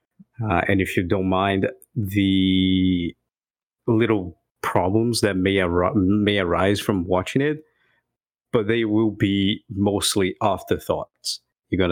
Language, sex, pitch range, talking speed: English, male, 95-110 Hz, 125 wpm